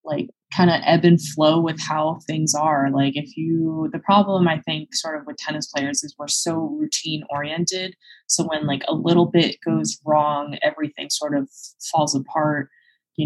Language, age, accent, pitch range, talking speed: English, 20-39, American, 150-175 Hz, 185 wpm